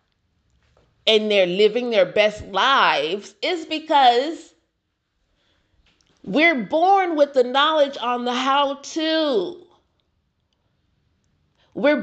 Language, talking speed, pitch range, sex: English, 85 wpm, 200-270 Hz, female